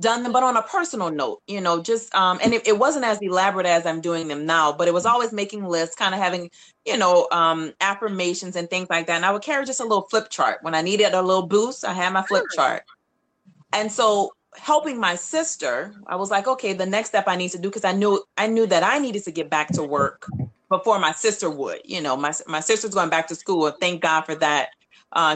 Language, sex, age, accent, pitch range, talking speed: English, female, 30-49, American, 165-220 Hz, 255 wpm